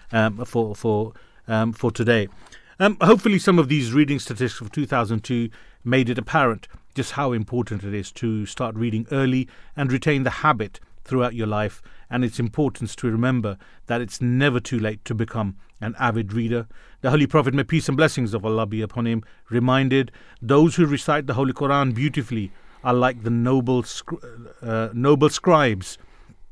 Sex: male